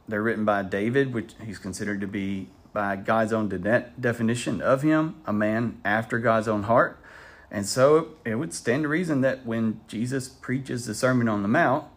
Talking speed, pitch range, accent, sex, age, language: 185 wpm, 95-125 Hz, American, male, 40-59, English